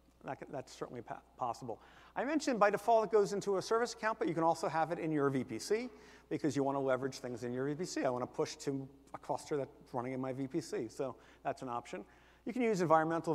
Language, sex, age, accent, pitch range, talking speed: English, male, 50-69, American, 130-180 Hz, 220 wpm